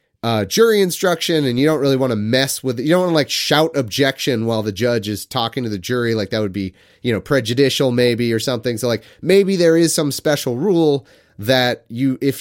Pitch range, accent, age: 110-150 Hz, American, 30-49